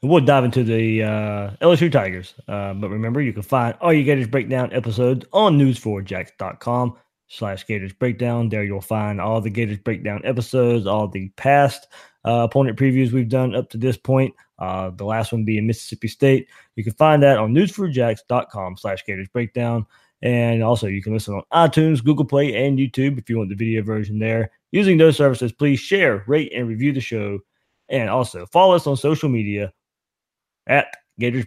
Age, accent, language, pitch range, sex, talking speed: 20-39, American, English, 110-145 Hz, male, 185 wpm